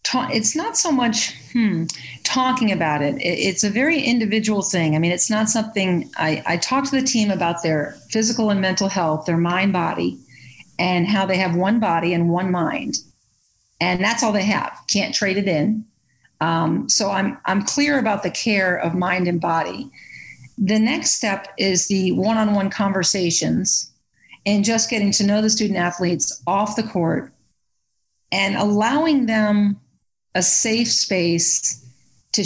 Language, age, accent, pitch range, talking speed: English, 40-59, American, 170-215 Hz, 165 wpm